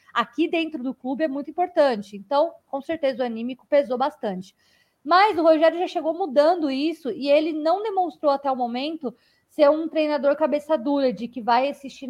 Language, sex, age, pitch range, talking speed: Portuguese, female, 20-39, 235-295 Hz, 185 wpm